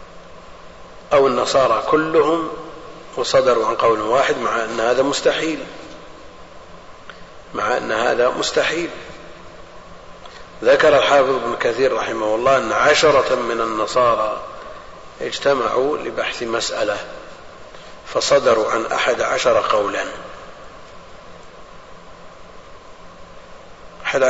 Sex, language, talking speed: male, Arabic, 85 wpm